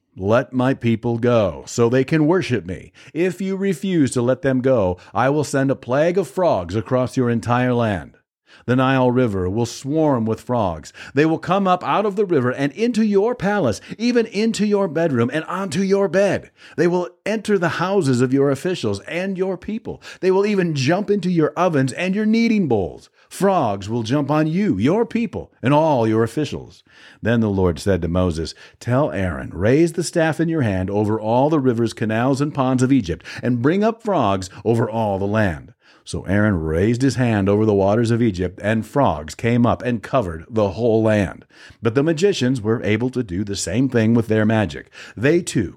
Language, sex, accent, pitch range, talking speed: English, male, American, 105-160 Hz, 200 wpm